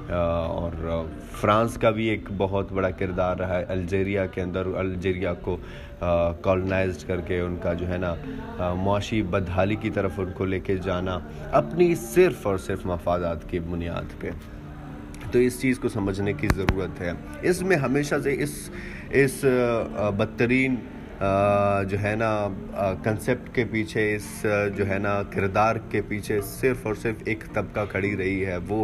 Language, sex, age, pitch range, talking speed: Urdu, male, 20-39, 90-110 Hz, 160 wpm